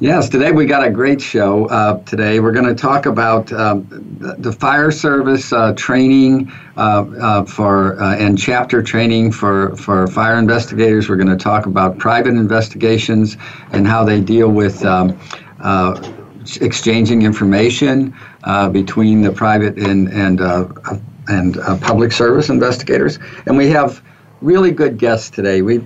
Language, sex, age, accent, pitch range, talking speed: English, male, 50-69, American, 100-120 Hz, 155 wpm